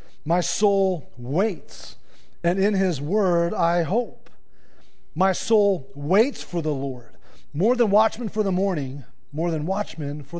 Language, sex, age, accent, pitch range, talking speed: English, male, 40-59, American, 135-170 Hz, 145 wpm